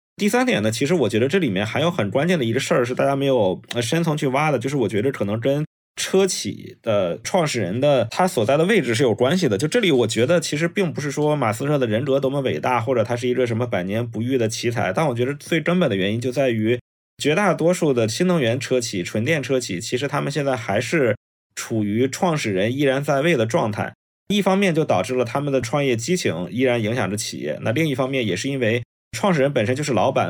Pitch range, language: 115-145 Hz, Chinese